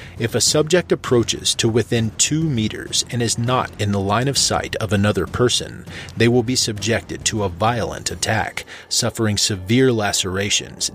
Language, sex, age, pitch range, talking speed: English, male, 30-49, 100-125 Hz, 165 wpm